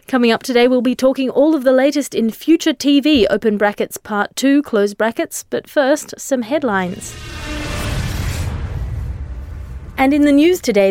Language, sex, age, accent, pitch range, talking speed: English, female, 30-49, Australian, 210-255 Hz, 155 wpm